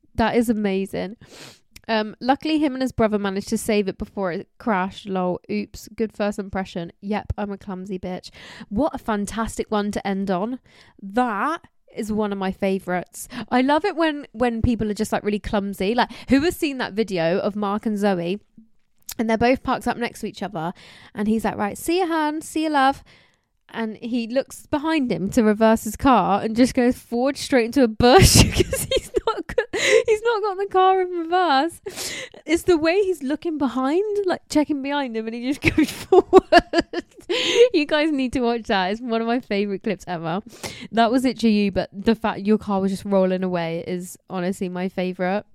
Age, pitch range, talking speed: 20-39, 205-285 Hz, 200 wpm